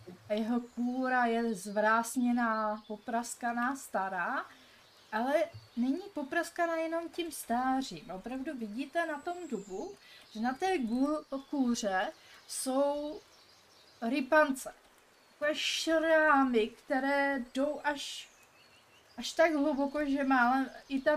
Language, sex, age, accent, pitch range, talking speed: Czech, female, 30-49, native, 225-280 Hz, 100 wpm